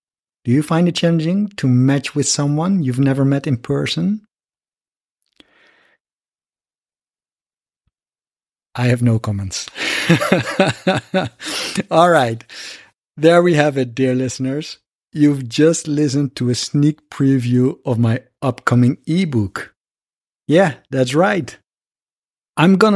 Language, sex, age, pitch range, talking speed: English, male, 50-69, 130-180 Hz, 110 wpm